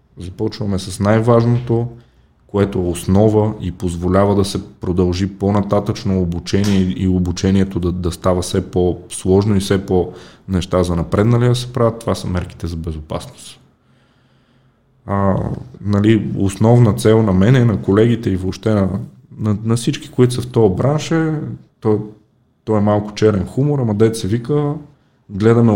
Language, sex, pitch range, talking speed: Bulgarian, male, 95-115 Hz, 150 wpm